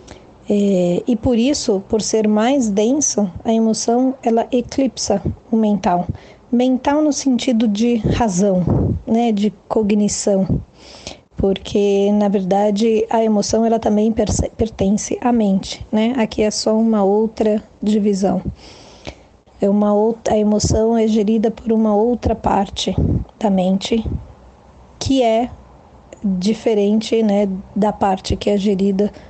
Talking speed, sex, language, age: 125 wpm, female, Portuguese, 20-39